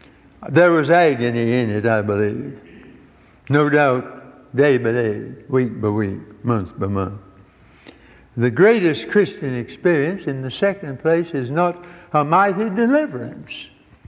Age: 60-79